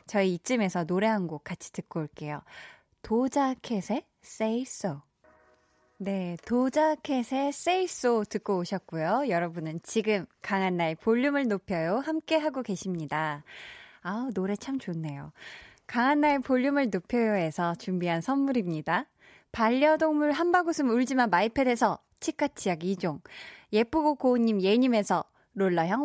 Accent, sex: native, female